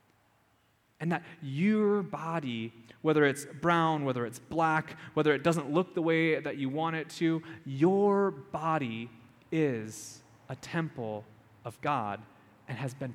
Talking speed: 140 wpm